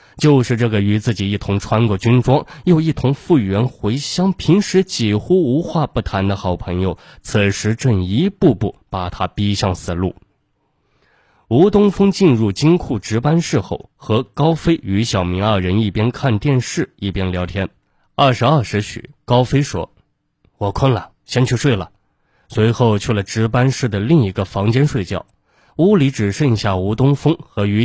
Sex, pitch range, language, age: male, 100-135 Hz, Chinese, 20-39